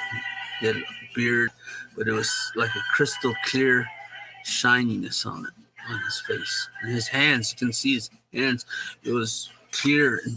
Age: 50-69